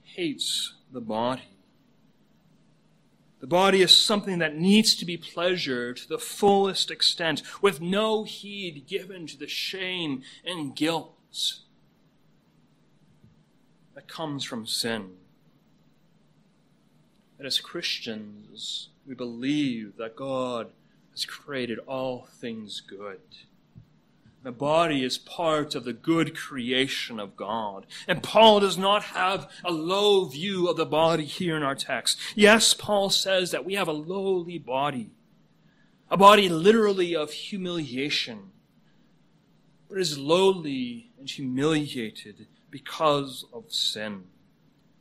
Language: English